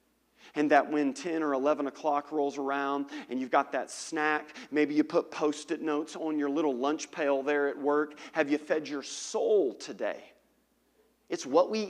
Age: 40-59